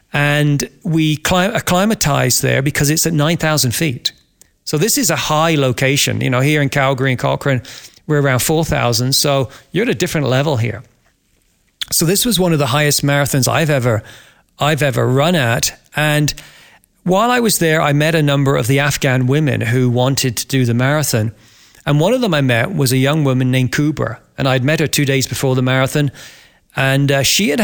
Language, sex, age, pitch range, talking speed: English, male, 40-59, 125-150 Hz, 195 wpm